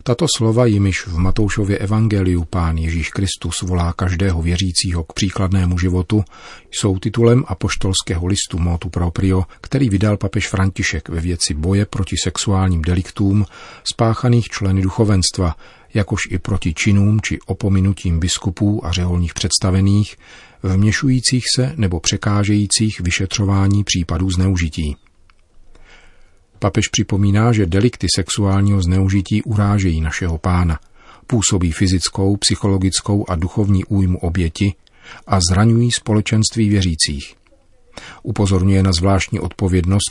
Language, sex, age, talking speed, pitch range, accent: Czech, male, 40-59, 110 wpm, 90-105 Hz, native